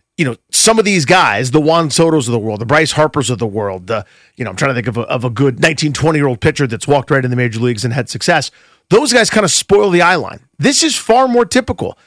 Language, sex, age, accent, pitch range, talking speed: English, male, 40-59, American, 130-170 Hz, 290 wpm